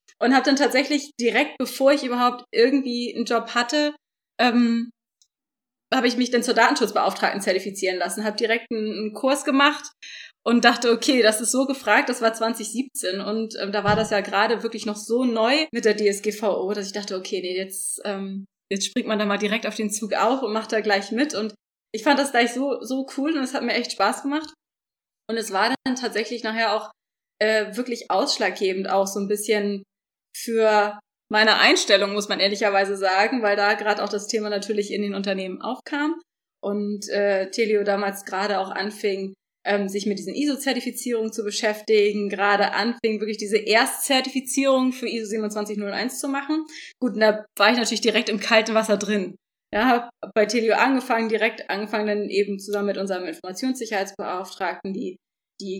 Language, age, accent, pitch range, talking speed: German, 20-39, German, 205-245 Hz, 180 wpm